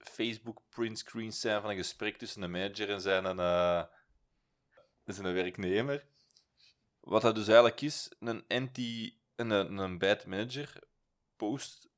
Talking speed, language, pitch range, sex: 120 wpm, Dutch, 90-110 Hz, male